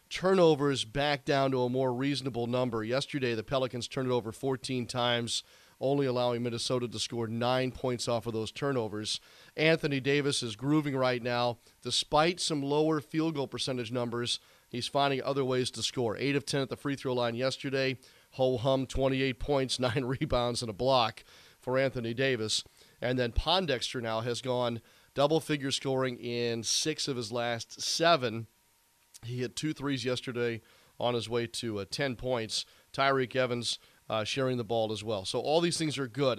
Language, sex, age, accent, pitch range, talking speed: English, male, 40-59, American, 120-140 Hz, 175 wpm